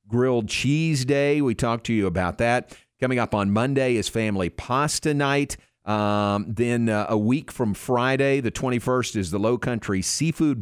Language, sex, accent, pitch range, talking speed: English, male, American, 105-140 Hz, 175 wpm